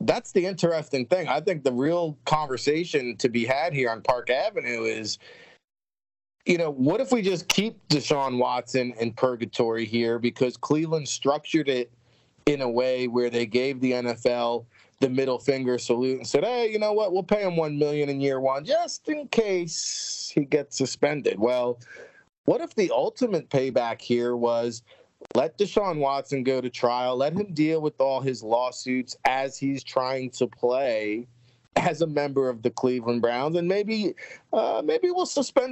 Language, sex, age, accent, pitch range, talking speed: English, male, 30-49, American, 125-170 Hz, 175 wpm